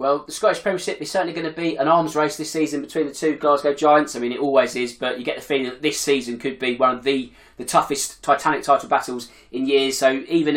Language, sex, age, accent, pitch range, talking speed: English, male, 20-39, British, 135-185 Hz, 260 wpm